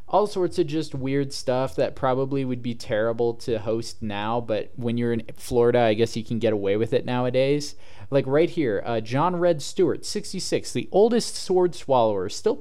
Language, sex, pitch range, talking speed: English, male, 110-150 Hz, 195 wpm